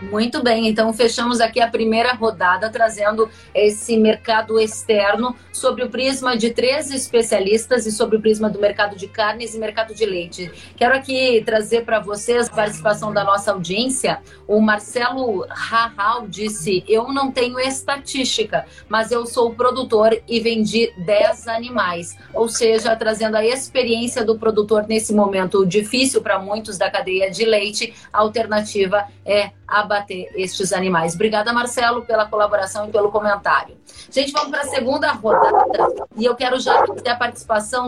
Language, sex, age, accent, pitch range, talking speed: Portuguese, female, 30-49, Brazilian, 210-250 Hz, 160 wpm